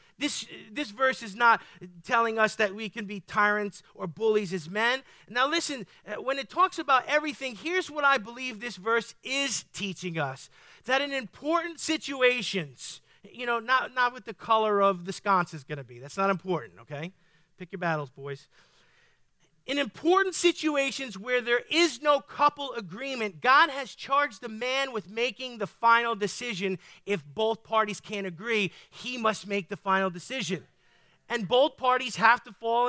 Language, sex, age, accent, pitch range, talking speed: English, male, 40-59, American, 195-270 Hz, 170 wpm